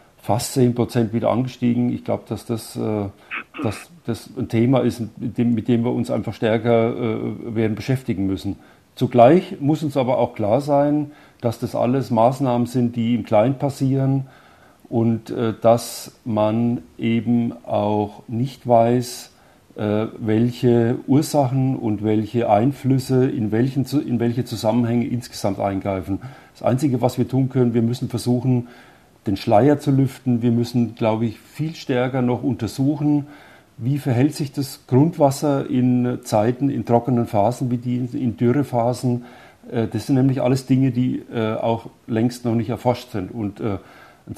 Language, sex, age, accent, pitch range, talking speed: German, male, 40-59, German, 115-135 Hz, 145 wpm